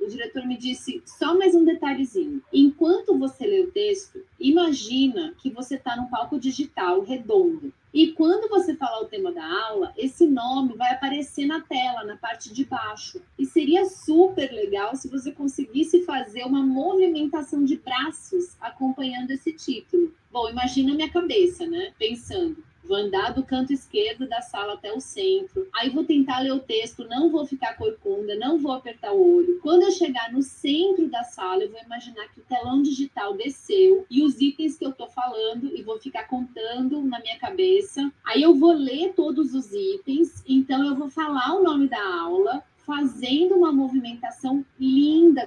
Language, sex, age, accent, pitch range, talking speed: Portuguese, female, 30-49, Brazilian, 260-355 Hz, 175 wpm